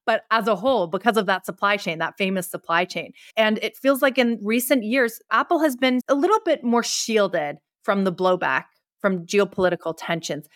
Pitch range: 180-215 Hz